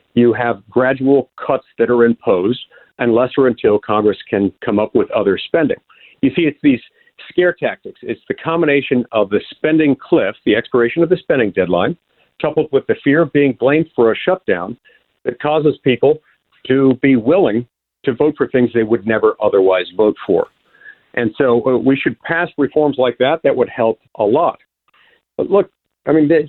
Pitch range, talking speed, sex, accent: 120-165 Hz, 180 wpm, male, American